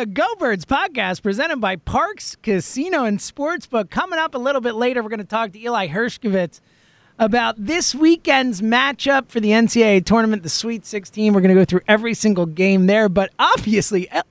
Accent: American